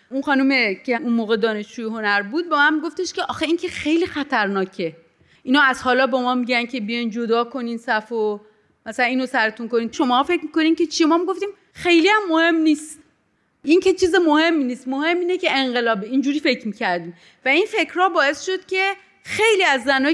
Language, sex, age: Persian, female, 30-49